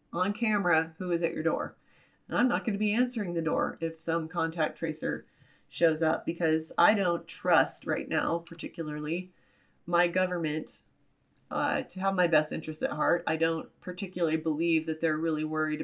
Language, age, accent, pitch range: English, 30-49, American, 165-200 Hz